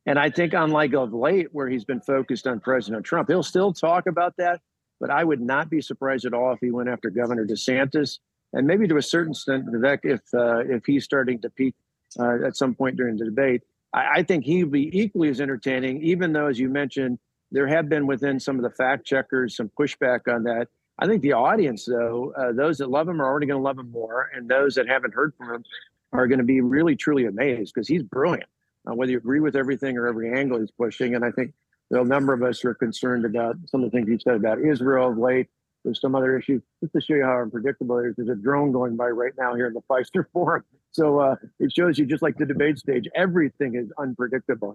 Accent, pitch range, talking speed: American, 125-145 Hz, 240 wpm